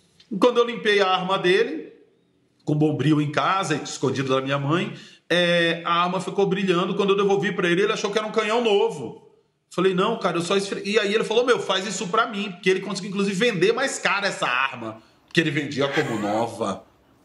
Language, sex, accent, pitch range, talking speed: Portuguese, male, Brazilian, 135-185 Hz, 210 wpm